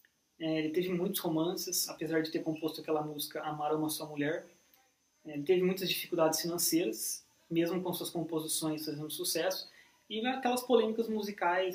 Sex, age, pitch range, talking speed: male, 20-39, 160-195 Hz, 150 wpm